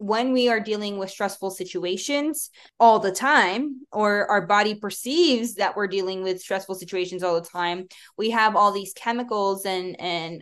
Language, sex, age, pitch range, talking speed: English, female, 20-39, 185-225 Hz, 175 wpm